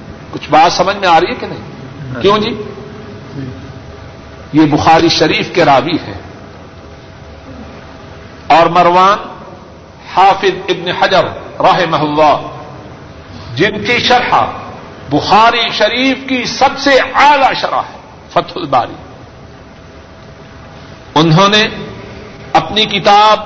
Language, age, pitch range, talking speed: Urdu, 50-69, 150-220 Hz, 105 wpm